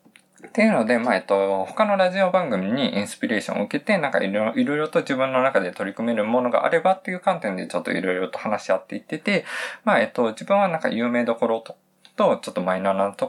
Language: Japanese